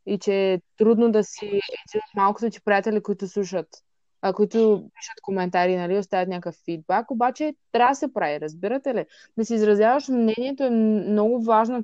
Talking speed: 165 wpm